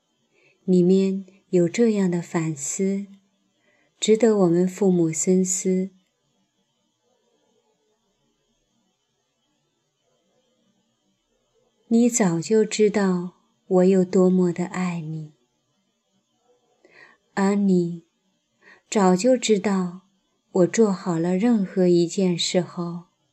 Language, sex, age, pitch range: Chinese, female, 30-49, 175-210 Hz